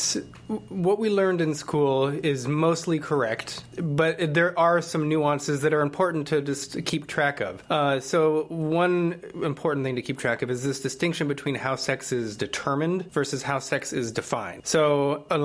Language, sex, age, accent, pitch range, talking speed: English, male, 30-49, American, 130-155 Hz, 175 wpm